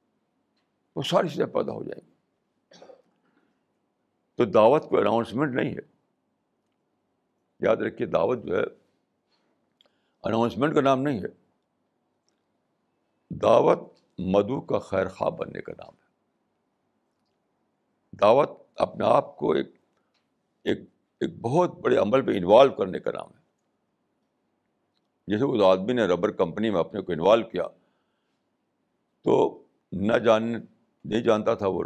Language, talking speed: Urdu, 125 wpm